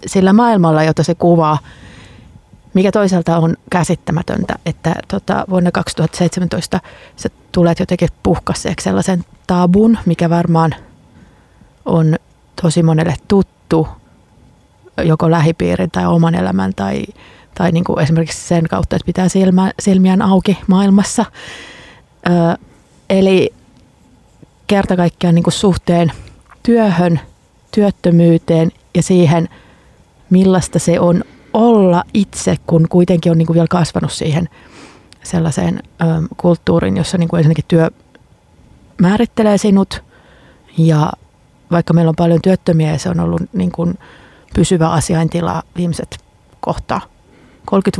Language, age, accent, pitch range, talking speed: Finnish, 30-49, native, 160-185 Hz, 105 wpm